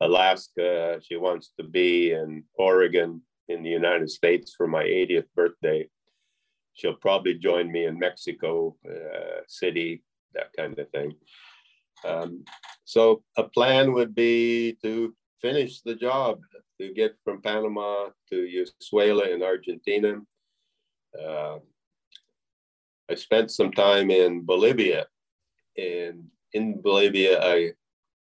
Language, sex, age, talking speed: English, male, 50-69, 120 wpm